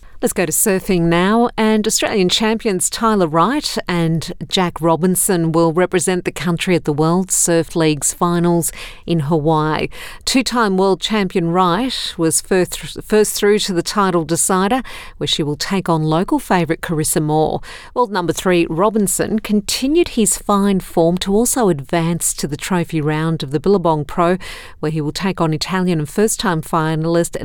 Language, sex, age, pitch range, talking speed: English, female, 50-69, 160-195 Hz, 160 wpm